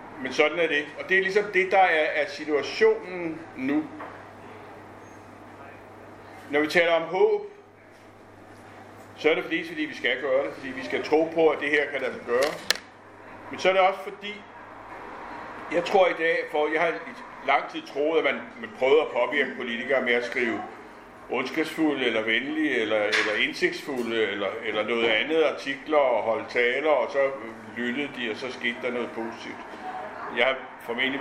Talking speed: 180 wpm